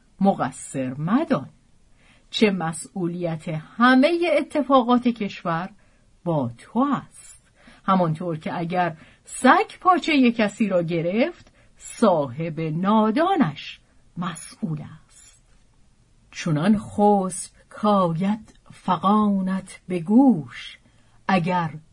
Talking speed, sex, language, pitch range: 80 wpm, female, Persian, 160-240 Hz